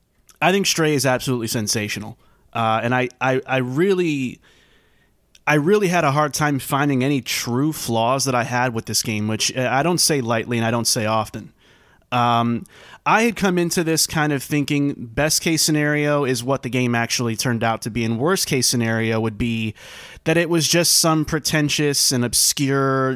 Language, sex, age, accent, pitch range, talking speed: English, male, 30-49, American, 115-150 Hz, 185 wpm